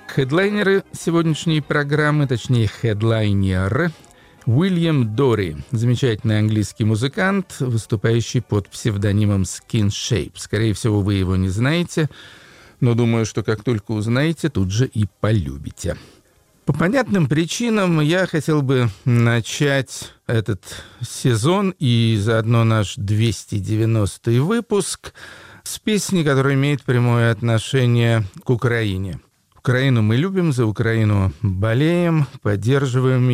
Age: 50-69